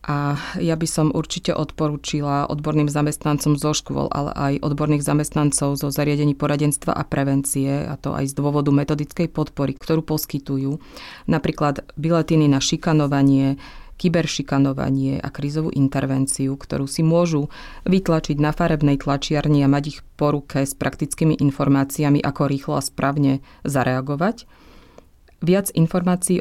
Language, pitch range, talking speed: Slovak, 140-160 Hz, 130 wpm